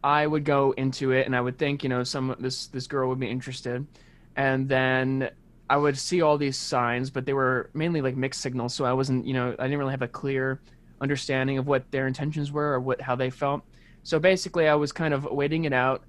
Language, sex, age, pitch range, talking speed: English, male, 20-39, 130-150 Hz, 240 wpm